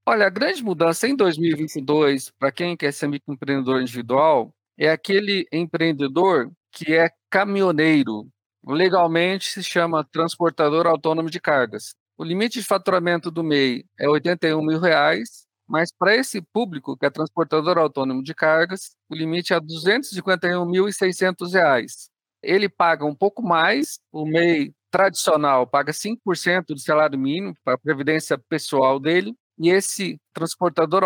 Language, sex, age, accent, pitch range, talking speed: Portuguese, male, 50-69, Brazilian, 150-180 Hz, 135 wpm